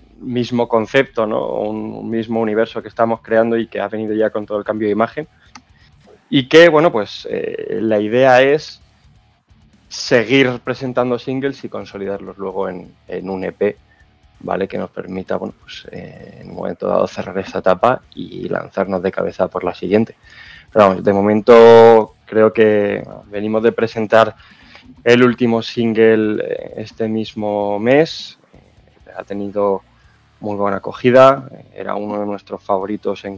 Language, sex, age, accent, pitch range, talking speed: Spanish, male, 20-39, Spanish, 100-115 Hz, 150 wpm